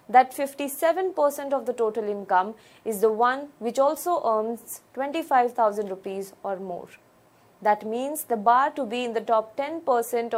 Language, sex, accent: English, female, Indian